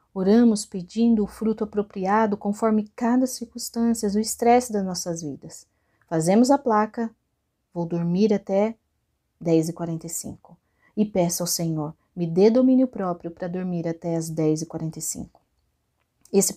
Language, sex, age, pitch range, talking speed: Portuguese, female, 30-49, 180-230 Hz, 125 wpm